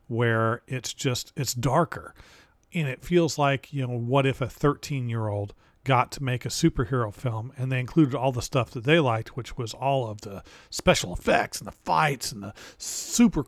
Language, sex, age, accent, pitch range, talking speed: English, male, 40-59, American, 115-145 Hz, 200 wpm